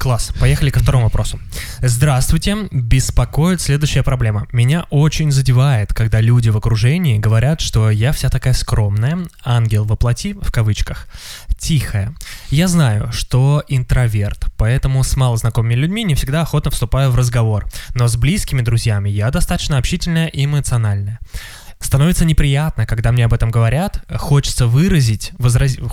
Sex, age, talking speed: male, 20-39, 135 wpm